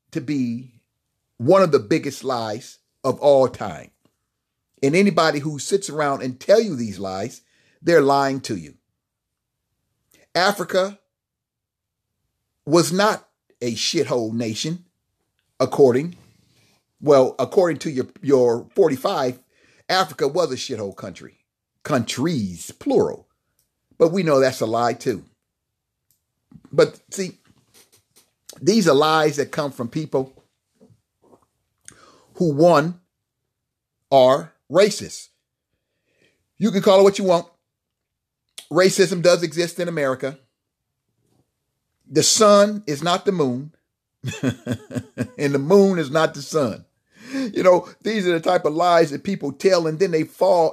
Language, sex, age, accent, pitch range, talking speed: English, male, 50-69, American, 120-175 Hz, 125 wpm